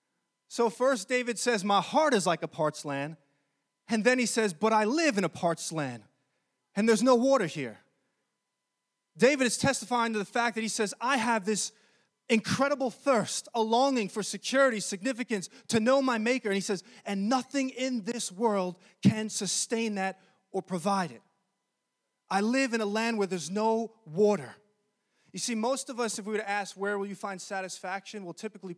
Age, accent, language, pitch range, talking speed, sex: 20-39, American, English, 185-235 Hz, 190 wpm, male